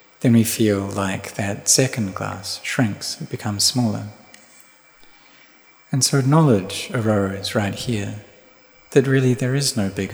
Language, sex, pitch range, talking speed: English, male, 100-125 Hz, 135 wpm